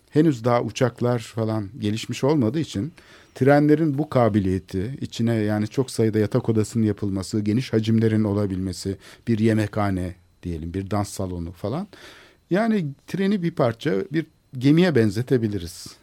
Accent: native